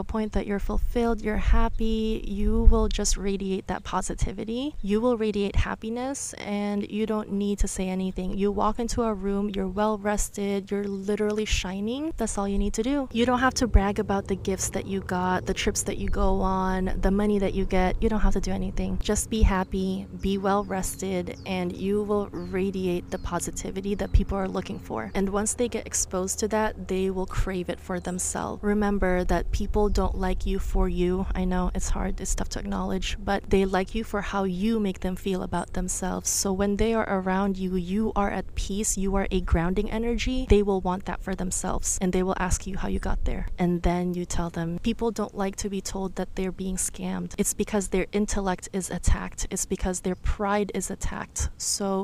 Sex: female